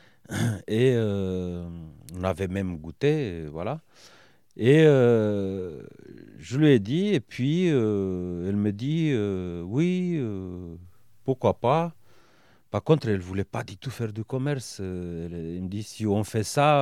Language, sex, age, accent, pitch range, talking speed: French, male, 40-59, French, 95-125 Hz, 155 wpm